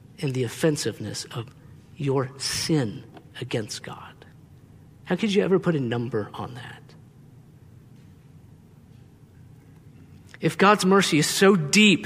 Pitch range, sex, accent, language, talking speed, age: 130-160 Hz, male, American, English, 115 wpm, 50-69